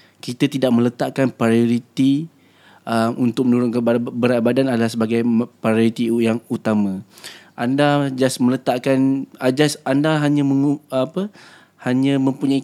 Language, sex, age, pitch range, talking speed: Indonesian, male, 20-39, 115-135 Hz, 115 wpm